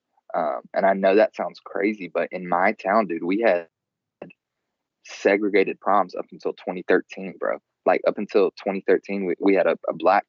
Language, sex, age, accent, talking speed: English, male, 20-39, American, 175 wpm